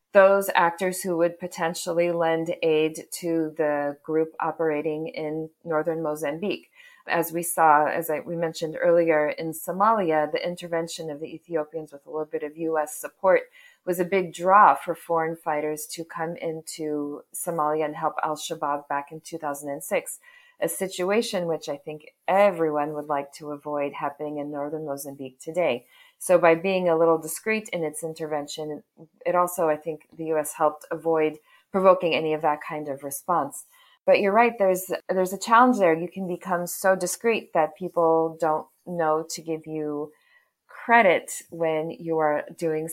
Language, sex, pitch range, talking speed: English, female, 155-180 Hz, 160 wpm